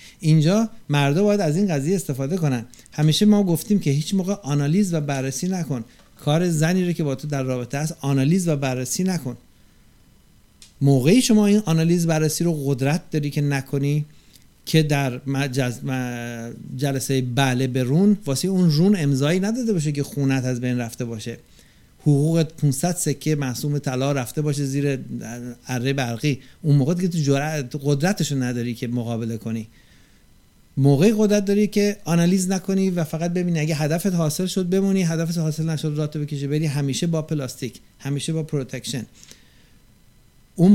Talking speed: 155 wpm